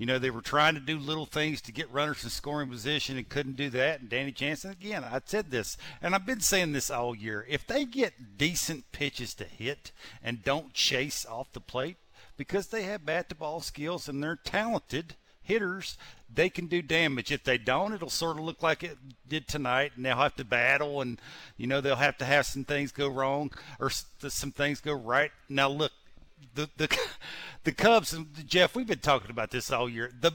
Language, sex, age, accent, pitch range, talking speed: English, male, 50-69, American, 135-180 Hz, 210 wpm